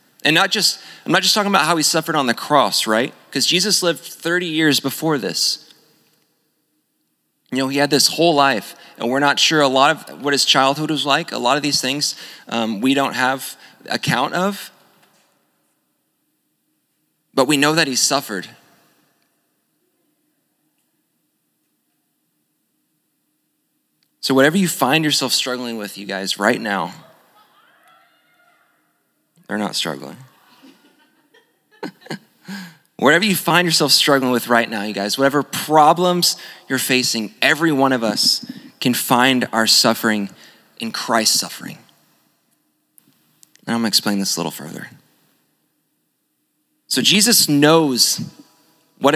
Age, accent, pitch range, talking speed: 20-39, American, 125-165 Hz, 135 wpm